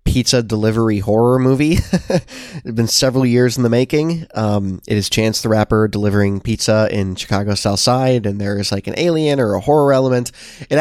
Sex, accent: male, American